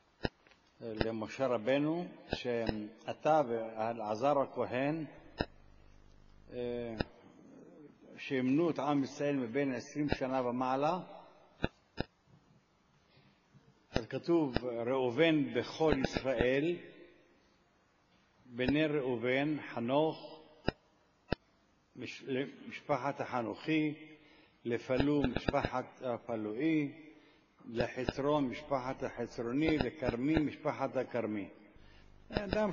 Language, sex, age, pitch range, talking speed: Hebrew, male, 60-79, 115-155 Hz, 60 wpm